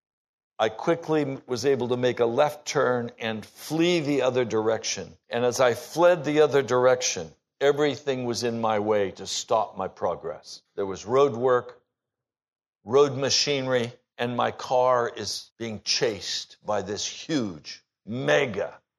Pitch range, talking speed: 105-130 Hz, 145 wpm